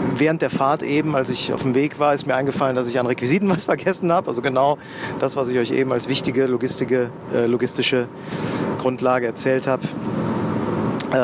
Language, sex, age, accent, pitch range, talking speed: German, male, 40-59, German, 125-155 Hz, 180 wpm